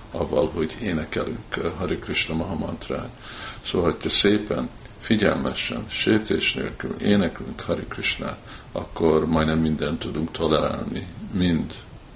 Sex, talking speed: male, 110 wpm